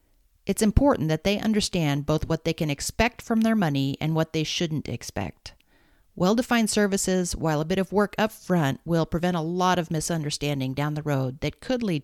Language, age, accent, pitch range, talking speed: English, 50-69, American, 135-180 Hz, 195 wpm